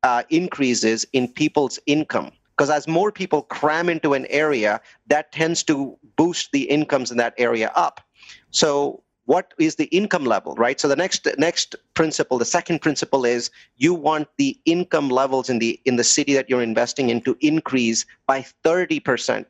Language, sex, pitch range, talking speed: English, male, 125-165 Hz, 180 wpm